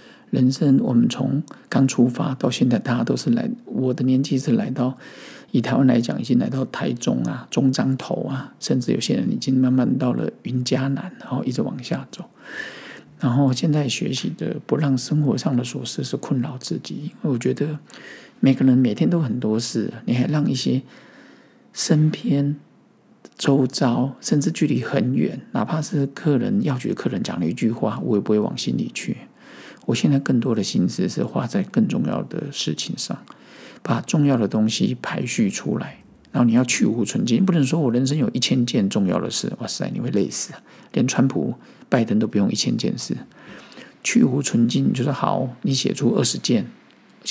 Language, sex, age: Chinese, male, 50-69